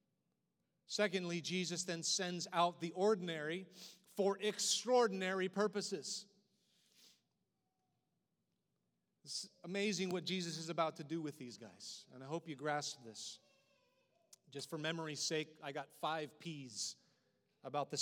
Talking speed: 125 wpm